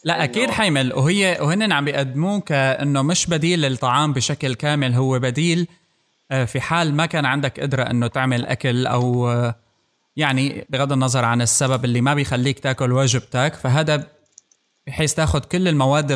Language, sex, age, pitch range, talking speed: Arabic, male, 20-39, 130-150 Hz, 145 wpm